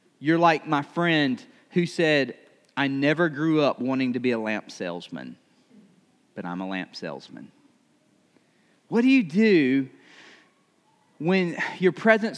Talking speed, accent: 135 wpm, American